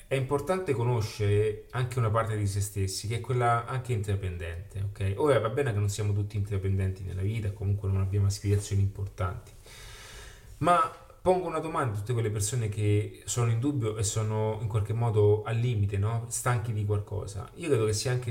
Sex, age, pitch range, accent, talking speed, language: male, 30-49, 100-125 Hz, native, 190 wpm, Italian